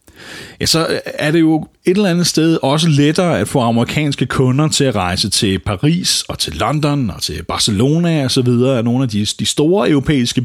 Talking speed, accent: 185 wpm, native